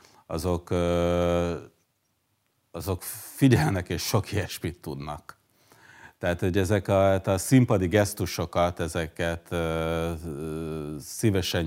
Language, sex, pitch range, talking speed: Hungarian, male, 80-95 Hz, 80 wpm